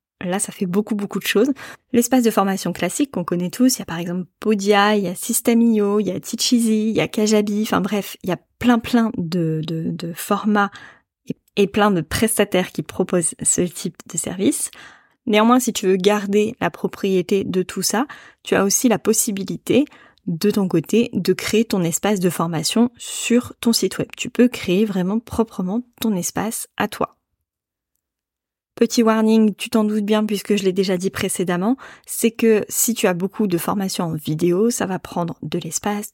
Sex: female